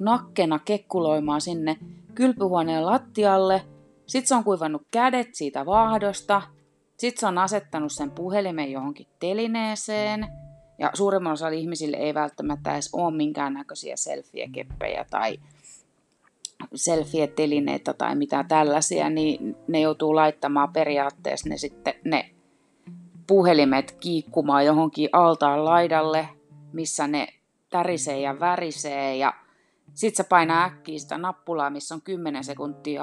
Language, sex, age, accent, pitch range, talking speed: Finnish, female, 30-49, native, 150-195 Hz, 115 wpm